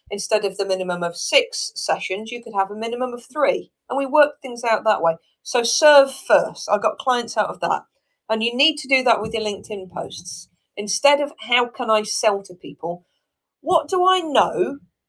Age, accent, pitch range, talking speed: 40-59, British, 185-255 Hz, 205 wpm